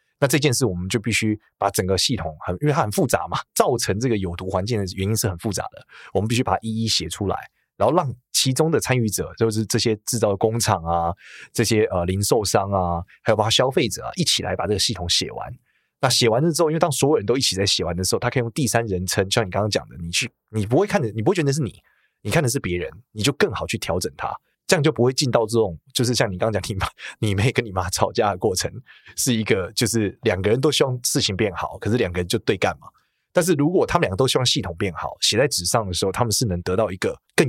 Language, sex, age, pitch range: Chinese, male, 20-39, 95-125 Hz